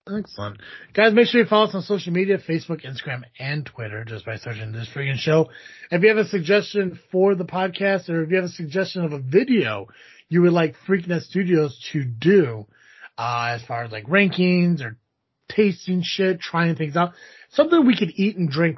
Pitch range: 125-180 Hz